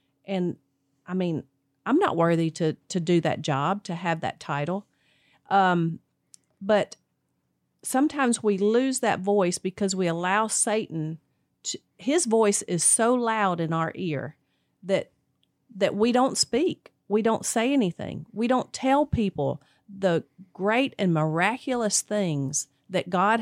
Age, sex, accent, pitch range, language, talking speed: 40-59, female, American, 170-230 Hz, English, 140 wpm